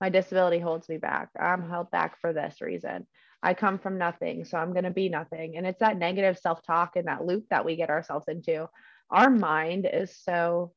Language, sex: English, female